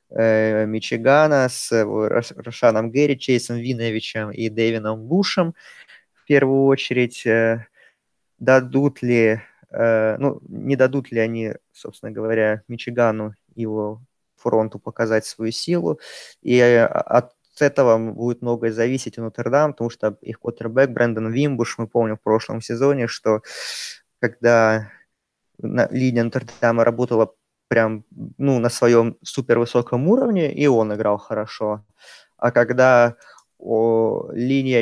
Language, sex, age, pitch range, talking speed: Russian, male, 20-39, 110-125 Hz, 110 wpm